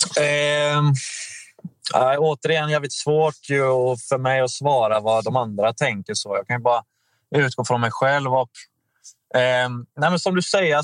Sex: male